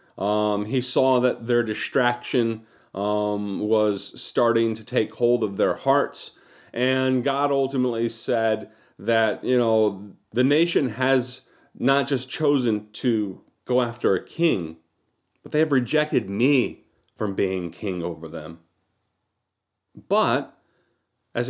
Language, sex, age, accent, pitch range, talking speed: English, male, 40-59, American, 105-135 Hz, 125 wpm